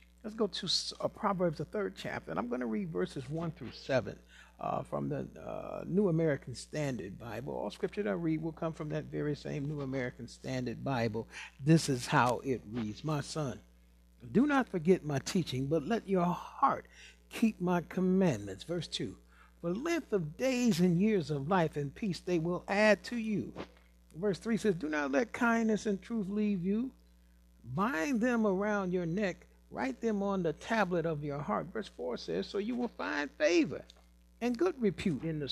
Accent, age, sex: American, 60-79, male